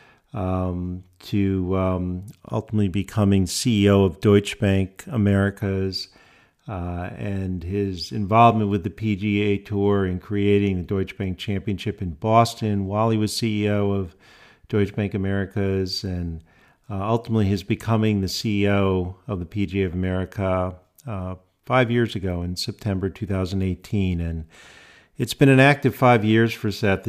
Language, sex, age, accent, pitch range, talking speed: English, male, 50-69, American, 95-105 Hz, 135 wpm